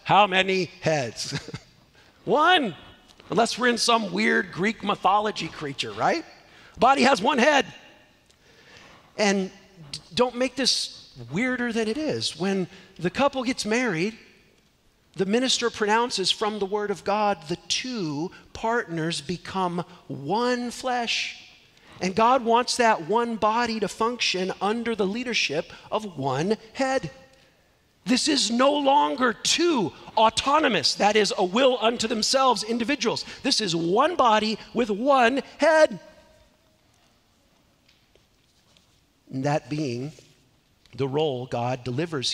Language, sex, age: English, male, 50-69